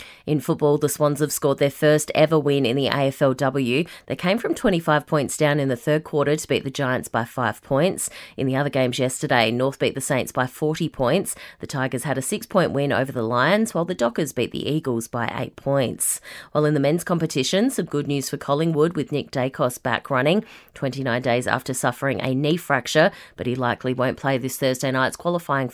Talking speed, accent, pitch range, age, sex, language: 210 wpm, Australian, 130-155 Hz, 30-49, female, English